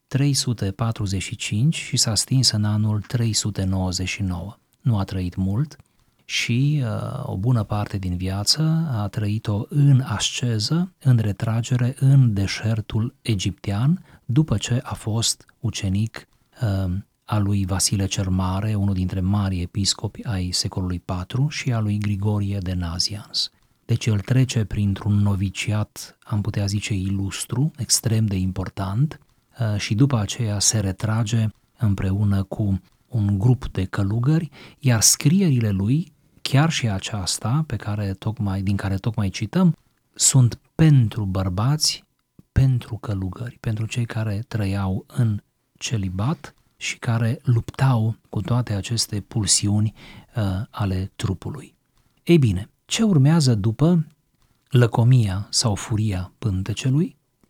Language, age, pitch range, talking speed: Romanian, 30-49, 100-125 Hz, 120 wpm